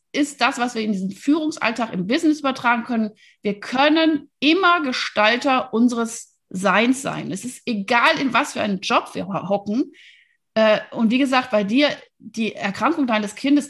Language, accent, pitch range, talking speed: German, German, 200-265 Hz, 160 wpm